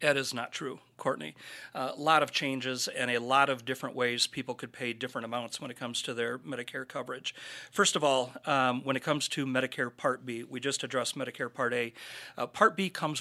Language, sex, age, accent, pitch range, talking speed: English, male, 40-59, American, 120-140 Hz, 220 wpm